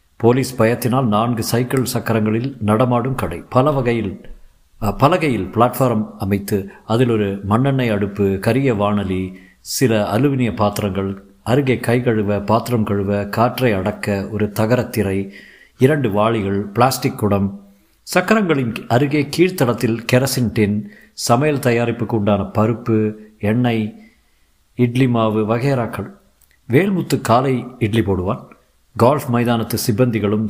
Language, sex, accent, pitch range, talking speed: Tamil, male, native, 100-130 Hz, 105 wpm